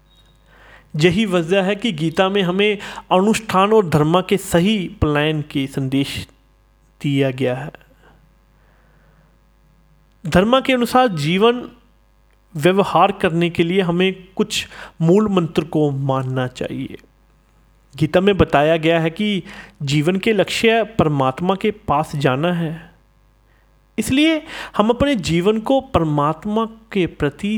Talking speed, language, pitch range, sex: 120 wpm, Hindi, 145-195 Hz, male